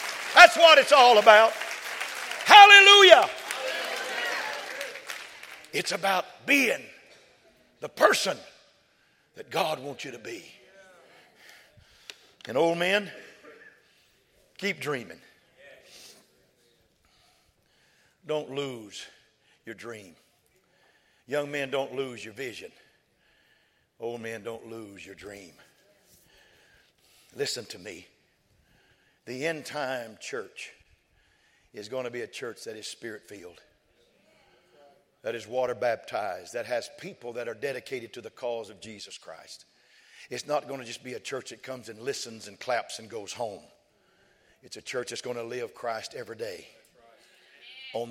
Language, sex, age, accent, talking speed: English, male, 60-79, American, 125 wpm